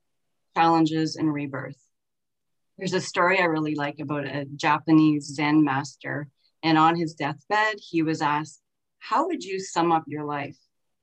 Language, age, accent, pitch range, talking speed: English, 30-49, American, 150-180 Hz, 150 wpm